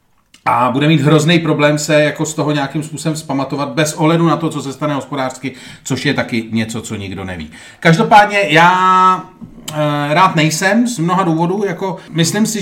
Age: 30-49